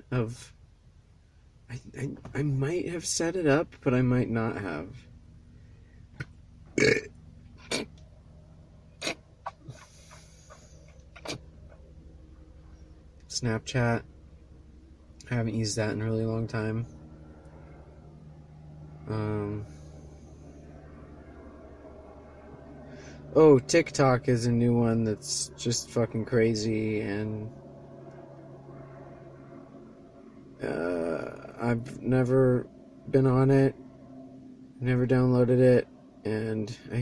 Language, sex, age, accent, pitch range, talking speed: English, male, 30-49, American, 80-130 Hz, 75 wpm